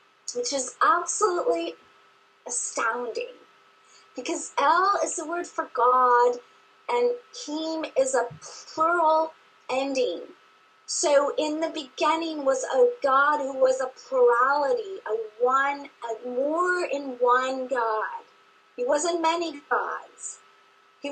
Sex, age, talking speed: female, 30-49, 115 wpm